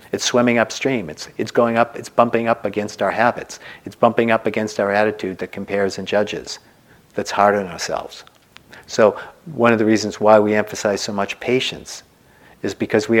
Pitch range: 100-120 Hz